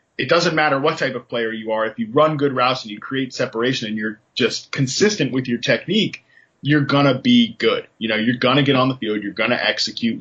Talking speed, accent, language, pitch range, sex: 255 wpm, American, English, 115-140 Hz, male